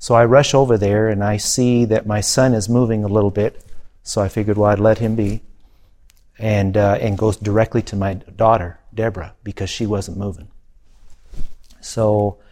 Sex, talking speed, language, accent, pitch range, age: male, 180 wpm, English, American, 95-110 Hz, 40-59